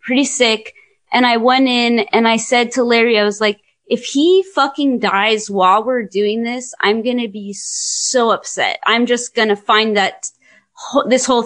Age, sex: 20-39, female